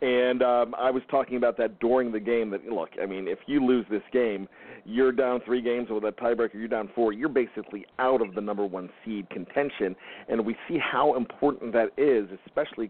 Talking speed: 215 wpm